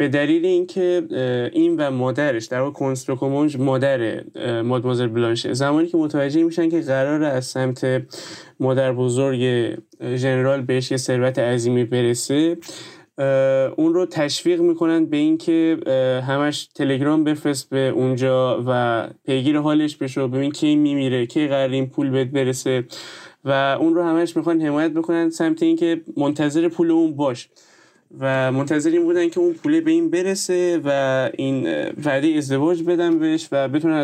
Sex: male